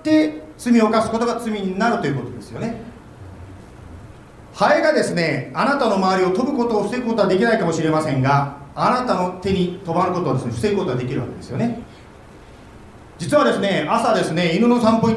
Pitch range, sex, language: 180-260 Hz, male, Japanese